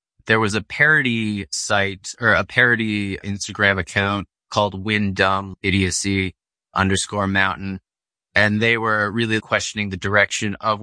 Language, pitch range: English, 95-115 Hz